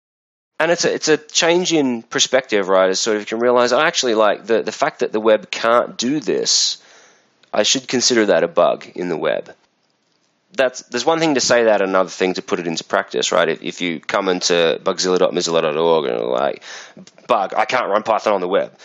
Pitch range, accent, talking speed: 95-150 Hz, Australian, 215 wpm